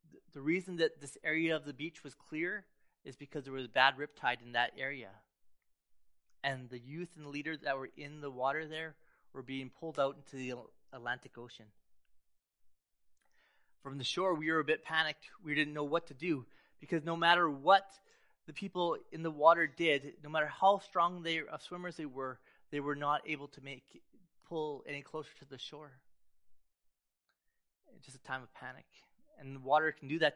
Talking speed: 190 wpm